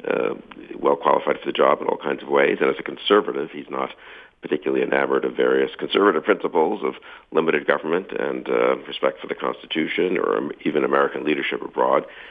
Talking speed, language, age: 180 wpm, English, 50-69